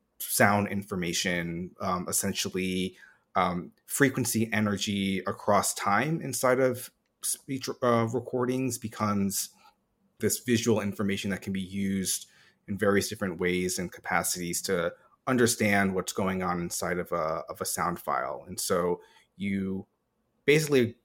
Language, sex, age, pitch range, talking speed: English, male, 30-49, 95-115 Hz, 125 wpm